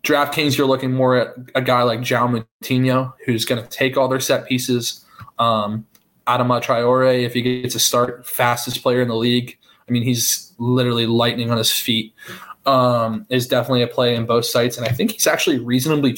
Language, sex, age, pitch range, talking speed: English, male, 20-39, 115-130 Hz, 195 wpm